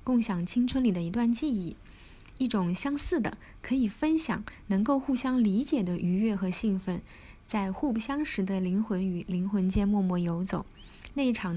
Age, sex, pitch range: 20-39, female, 190-240 Hz